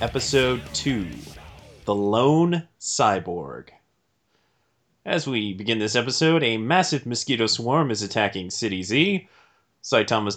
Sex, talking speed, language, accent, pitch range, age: male, 110 wpm, English, American, 110-145 Hz, 30-49